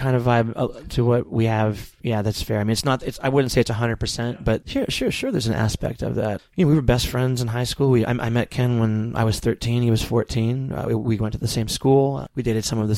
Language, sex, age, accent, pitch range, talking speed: English, male, 30-49, American, 110-130 Hz, 300 wpm